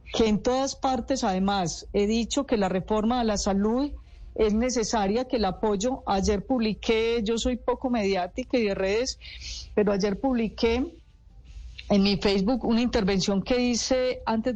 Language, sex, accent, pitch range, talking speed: Spanish, female, Colombian, 200-245 Hz, 155 wpm